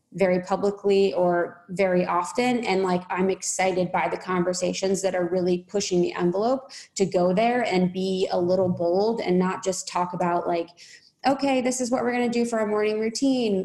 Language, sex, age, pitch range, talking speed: English, female, 20-39, 180-210 Hz, 195 wpm